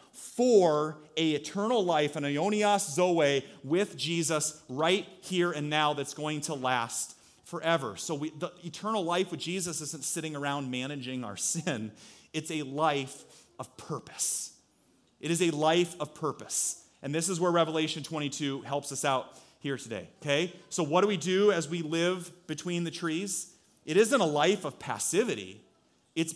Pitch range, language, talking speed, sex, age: 135-170 Hz, English, 165 wpm, male, 30-49